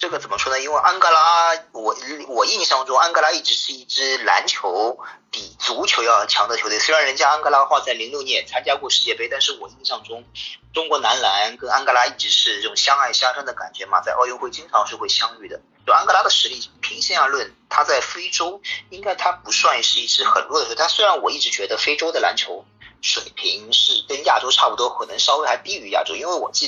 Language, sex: Chinese, male